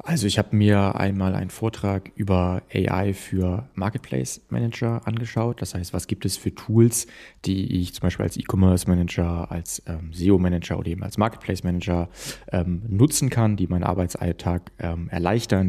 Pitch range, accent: 85-105 Hz, German